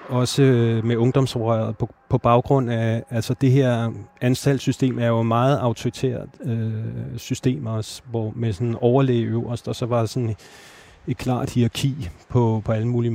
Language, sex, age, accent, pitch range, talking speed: Danish, male, 30-49, native, 110-125 Hz, 145 wpm